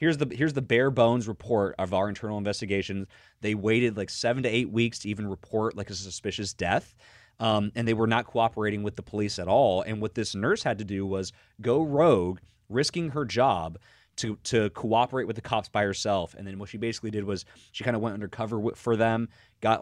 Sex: male